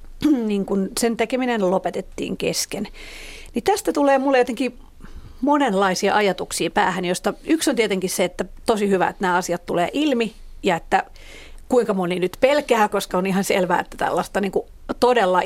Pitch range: 185-235 Hz